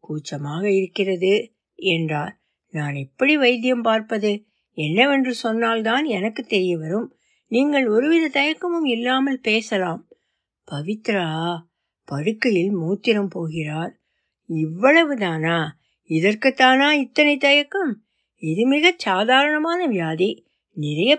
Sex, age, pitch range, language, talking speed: female, 60-79, 180-245 Hz, Tamil, 90 wpm